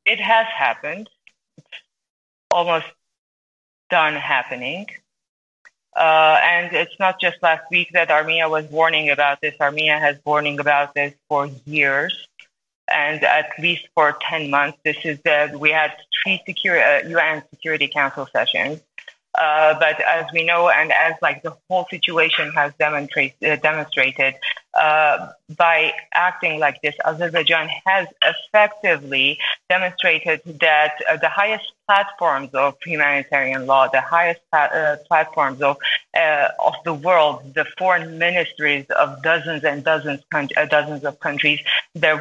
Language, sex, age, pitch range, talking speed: English, female, 30-49, 145-170 Hz, 140 wpm